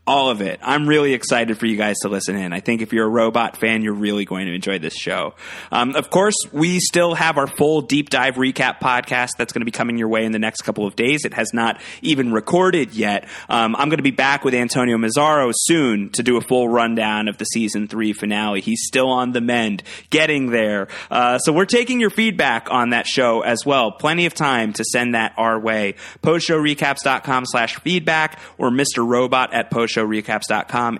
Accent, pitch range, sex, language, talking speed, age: American, 110-145 Hz, male, English, 215 wpm, 30-49